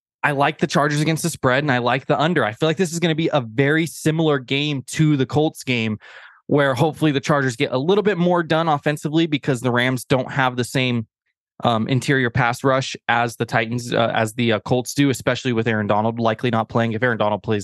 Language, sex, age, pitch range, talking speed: English, male, 20-39, 120-160 Hz, 240 wpm